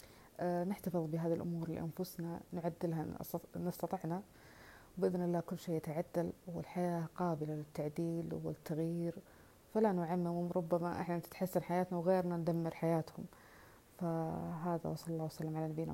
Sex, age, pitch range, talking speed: female, 30-49, 160-180 Hz, 115 wpm